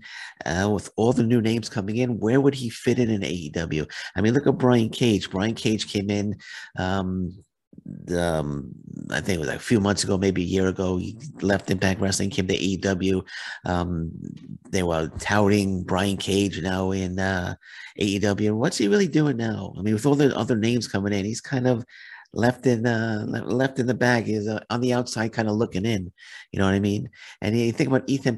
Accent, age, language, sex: American, 50-69, English, male